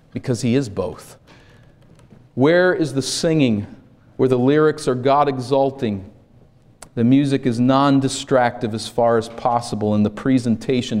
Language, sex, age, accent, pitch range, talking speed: English, male, 40-59, American, 120-135 Hz, 135 wpm